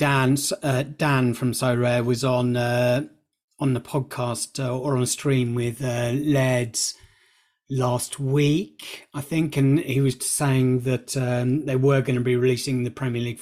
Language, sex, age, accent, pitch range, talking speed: English, male, 30-49, British, 125-140 Hz, 175 wpm